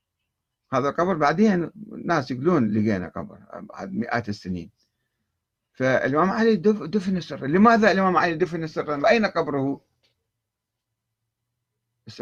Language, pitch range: Arabic, 110-170 Hz